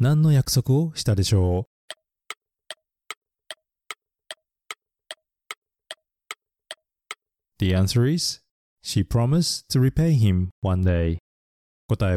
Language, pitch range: Japanese, 95-145 Hz